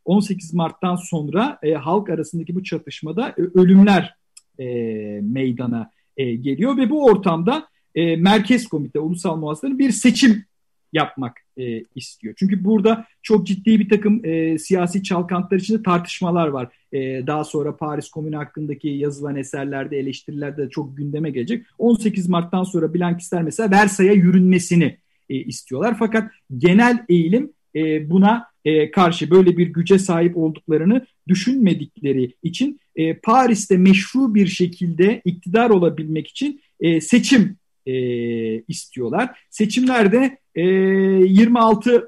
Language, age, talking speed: Turkish, 50-69, 120 wpm